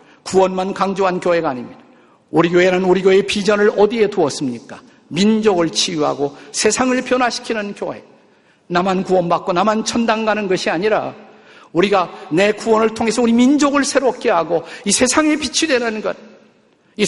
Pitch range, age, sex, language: 170-225 Hz, 50-69, male, Korean